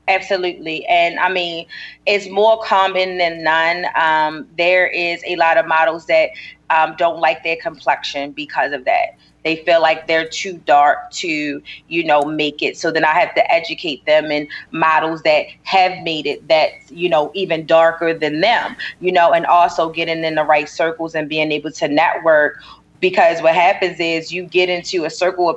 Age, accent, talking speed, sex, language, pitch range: 30-49, American, 190 wpm, female, English, 165-190 Hz